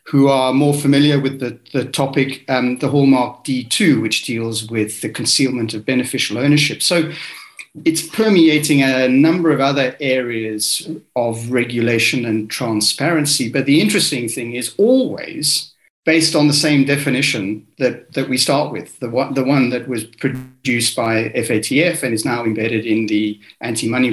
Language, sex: English, male